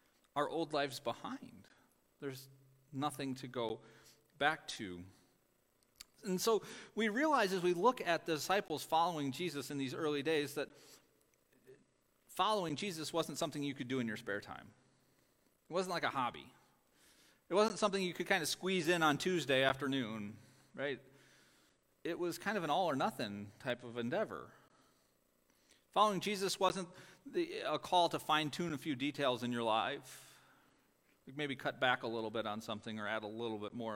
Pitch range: 120-170 Hz